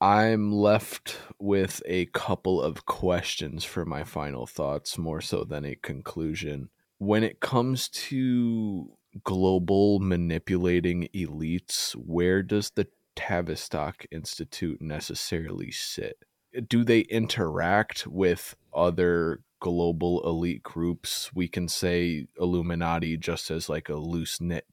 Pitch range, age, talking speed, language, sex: 85-100 Hz, 20-39, 115 wpm, English, male